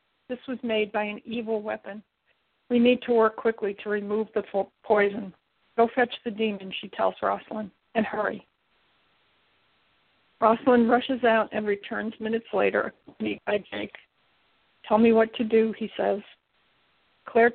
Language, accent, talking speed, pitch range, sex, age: English, American, 145 wpm, 210-235 Hz, female, 50-69